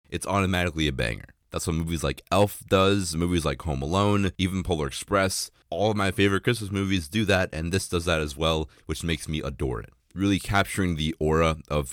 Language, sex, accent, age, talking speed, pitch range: English, male, American, 30-49, 205 wpm, 80-95 Hz